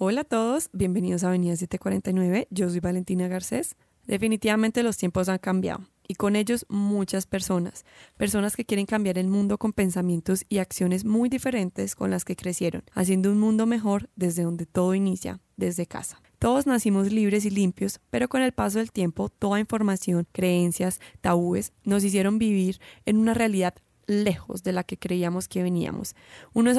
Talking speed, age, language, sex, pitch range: 170 wpm, 20-39, Spanish, female, 185-210 Hz